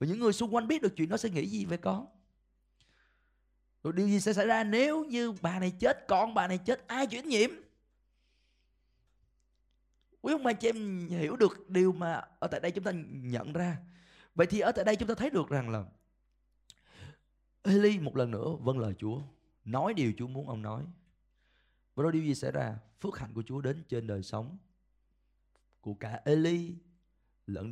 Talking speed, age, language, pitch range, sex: 195 wpm, 20-39, Vietnamese, 105-175 Hz, male